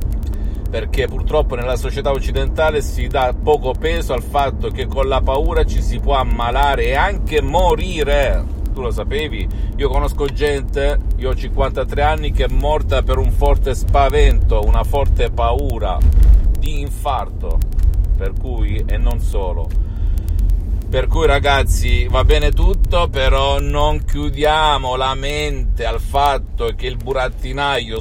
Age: 50-69